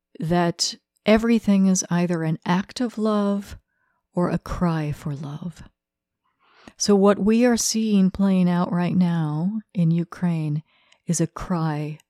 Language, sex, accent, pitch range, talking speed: English, female, American, 160-200 Hz, 135 wpm